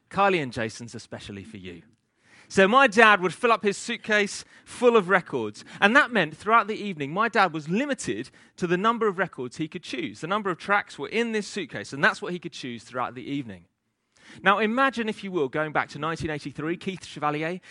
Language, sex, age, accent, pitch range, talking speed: English, male, 30-49, British, 120-200 Hz, 215 wpm